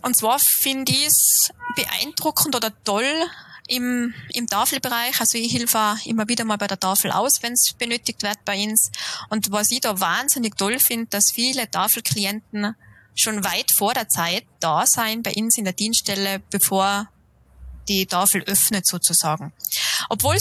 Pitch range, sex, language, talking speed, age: 200-240 Hz, female, German, 160 wpm, 20-39